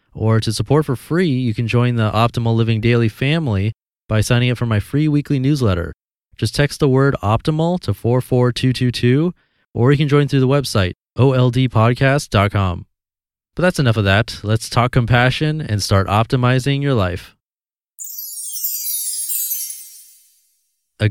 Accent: American